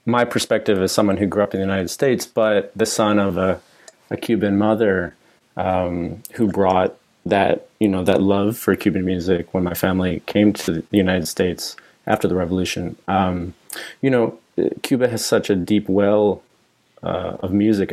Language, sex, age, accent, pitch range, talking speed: English, male, 30-49, American, 95-105 Hz, 175 wpm